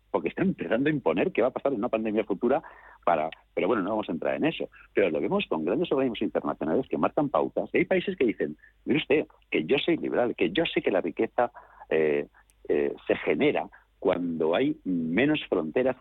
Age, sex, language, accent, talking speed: 60-79, male, Spanish, Spanish, 215 wpm